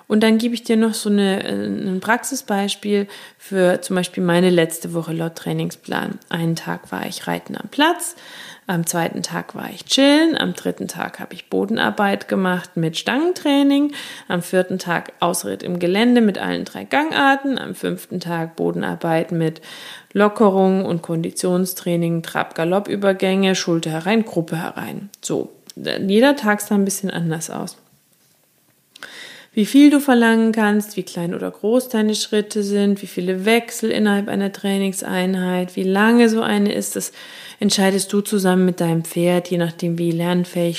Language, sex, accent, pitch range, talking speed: German, female, German, 175-225 Hz, 155 wpm